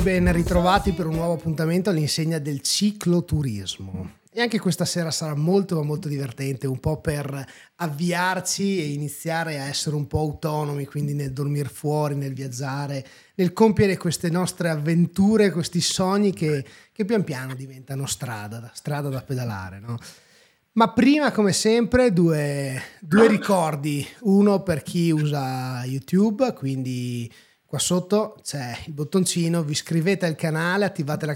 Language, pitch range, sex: Italian, 140-185 Hz, male